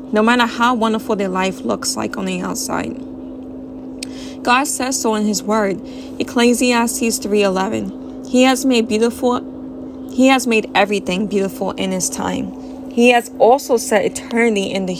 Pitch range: 200-265 Hz